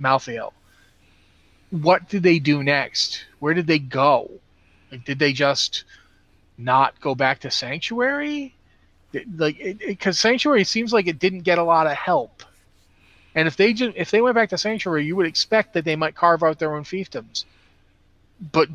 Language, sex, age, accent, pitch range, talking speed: English, male, 30-49, American, 125-180 Hz, 175 wpm